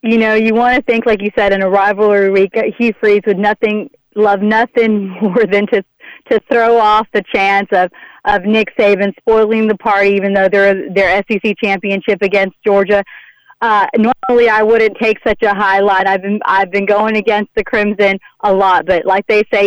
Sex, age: female, 30-49